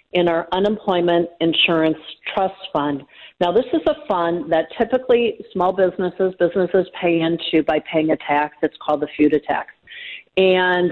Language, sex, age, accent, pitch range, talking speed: English, female, 50-69, American, 160-185 Hz, 155 wpm